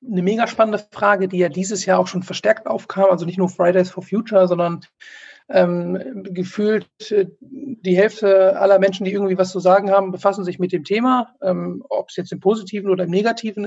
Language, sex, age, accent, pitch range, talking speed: German, male, 50-69, German, 185-215 Hz, 200 wpm